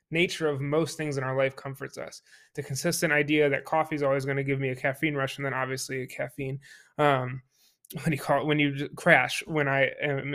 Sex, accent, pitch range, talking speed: male, American, 140-160 Hz, 230 wpm